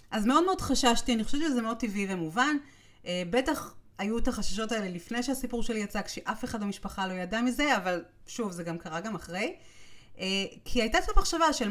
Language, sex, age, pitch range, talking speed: Hebrew, female, 30-49, 185-270 Hz, 190 wpm